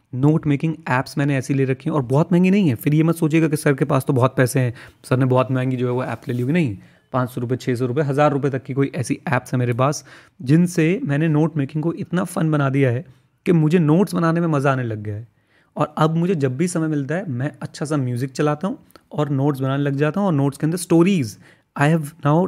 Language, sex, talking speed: Hindi, male, 270 wpm